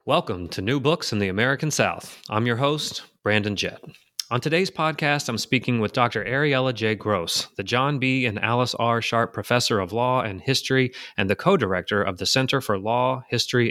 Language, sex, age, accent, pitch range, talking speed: English, male, 30-49, American, 105-130 Hz, 195 wpm